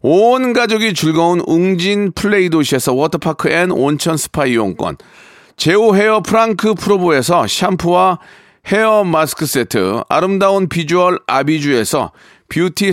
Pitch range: 165-210 Hz